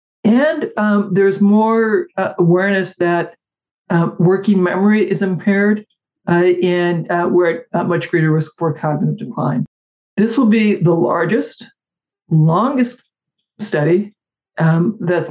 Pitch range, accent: 170-210 Hz, American